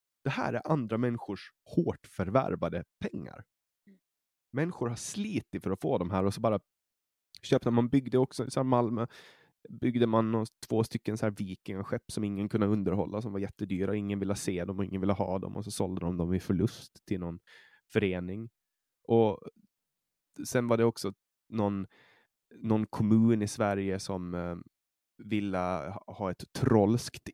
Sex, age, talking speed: male, 20-39, 175 wpm